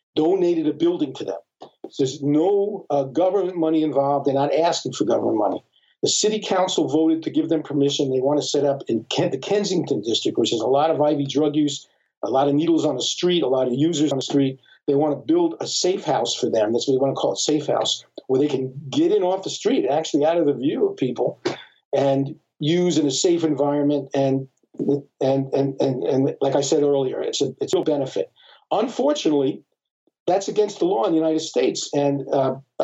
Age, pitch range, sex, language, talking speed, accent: 50-69, 140-175 Hz, male, English, 225 wpm, American